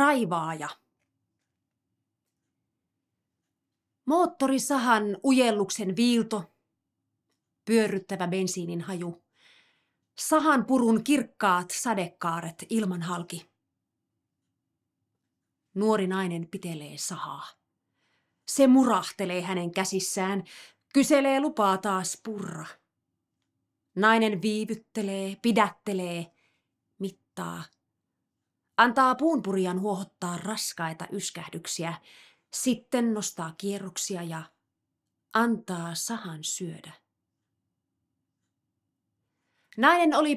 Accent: native